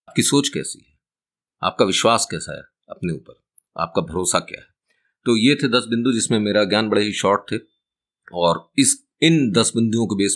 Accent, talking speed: native, 190 wpm